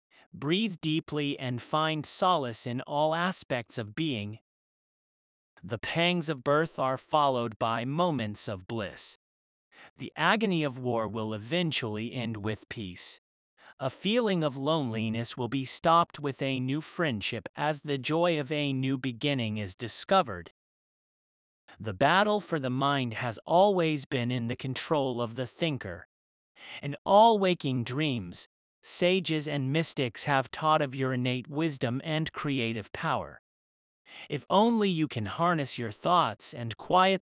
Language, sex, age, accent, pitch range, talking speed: English, male, 30-49, American, 120-160 Hz, 140 wpm